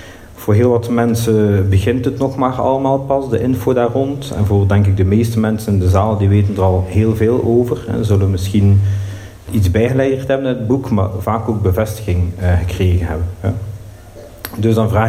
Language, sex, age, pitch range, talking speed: Dutch, male, 50-69, 100-115 Hz, 190 wpm